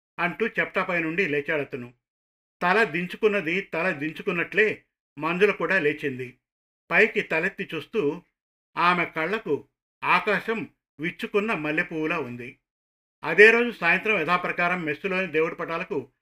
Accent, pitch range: native, 155-195 Hz